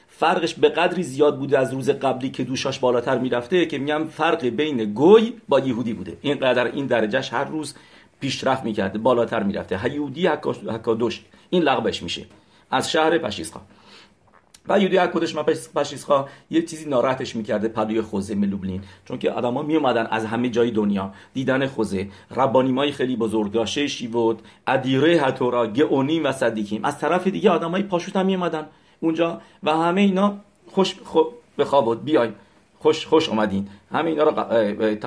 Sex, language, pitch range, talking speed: male, English, 110-155 Hz, 155 wpm